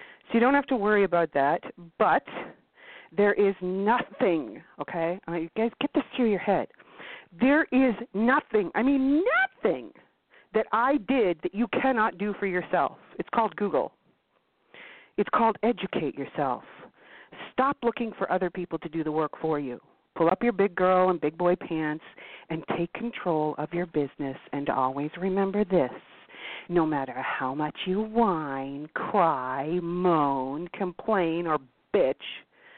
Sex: female